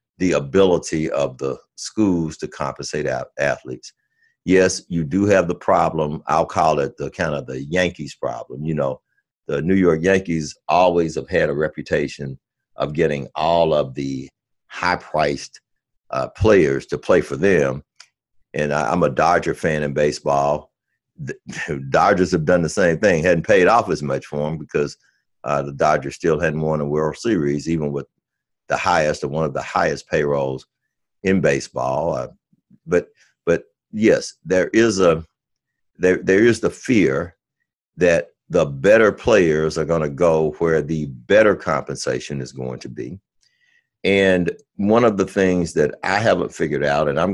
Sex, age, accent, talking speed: male, 60-79, American, 165 wpm